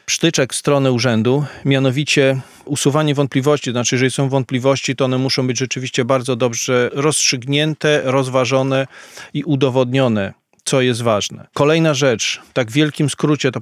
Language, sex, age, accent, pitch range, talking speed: Polish, male, 40-59, native, 130-145 Hz, 135 wpm